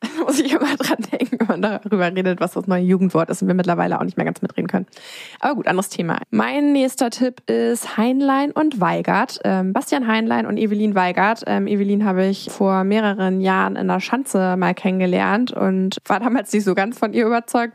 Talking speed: 205 wpm